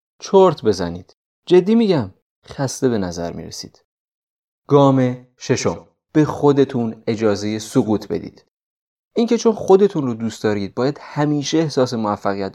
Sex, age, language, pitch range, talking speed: male, 30-49, Persian, 110-155 Hz, 120 wpm